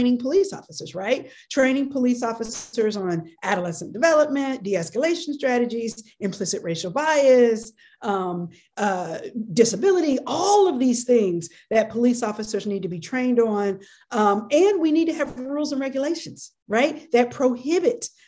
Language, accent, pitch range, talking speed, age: English, American, 210-295 Hz, 140 wpm, 40-59